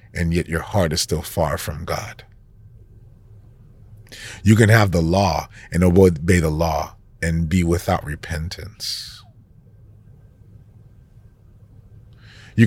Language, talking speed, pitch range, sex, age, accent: English, 110 wpm, 95-115 Hz, male, 40-59, American